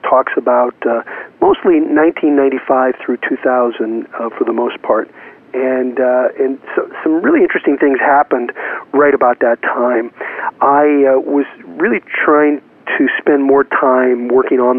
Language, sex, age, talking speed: English, male, 40-59, 145 wpm